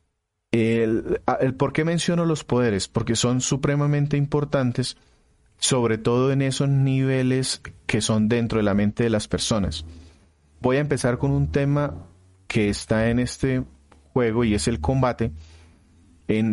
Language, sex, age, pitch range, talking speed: Spanish, male, 30-49, 105-130 Hz, 150 wpm